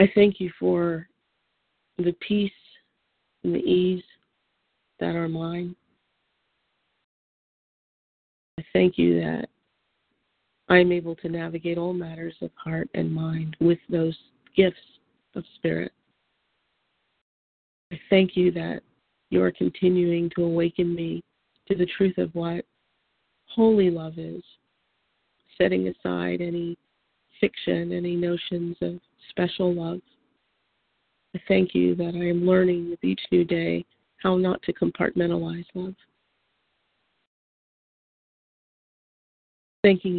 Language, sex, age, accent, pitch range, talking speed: English, female, 40-59, American, 165-180 Hz, 110 wpm